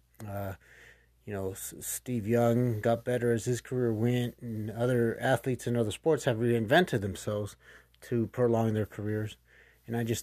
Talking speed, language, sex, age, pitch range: 160 wpm, English, male, 30-49, 105-120 Hz